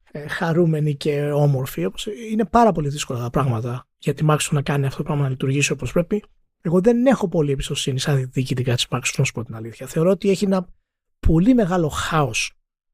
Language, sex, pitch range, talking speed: Greek, male, 145-225 Hz, 190 wpm